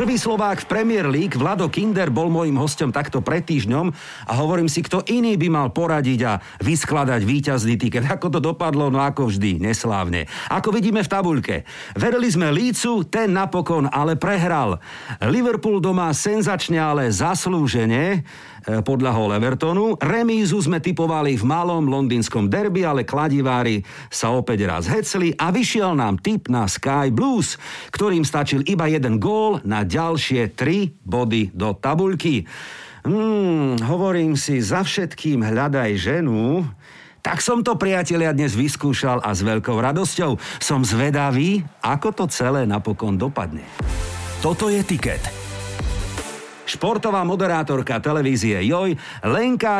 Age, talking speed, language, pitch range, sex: 50-69, 140 wpm, Slovak, 120-185 Hz, male